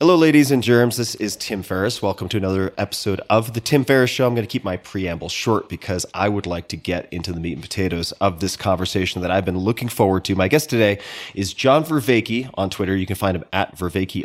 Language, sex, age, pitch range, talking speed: English, male, 30-49, 90-120 Hz, 245 wpm